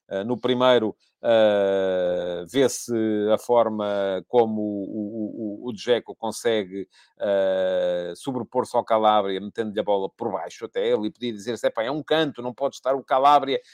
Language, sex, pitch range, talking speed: Portuguese, male, 100-140 Hz, 155 wpm